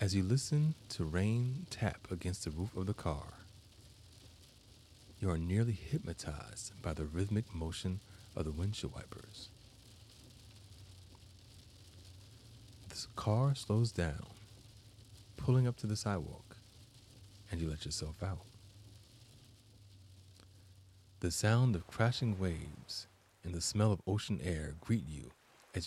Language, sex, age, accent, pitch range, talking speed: English, male, 30-49, American, 90-110 Hz, 120 wpm